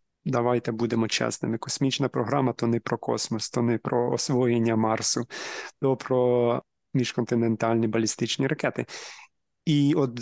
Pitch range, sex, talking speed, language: 125-145 Hz, male, 130 wpm, Ukrainian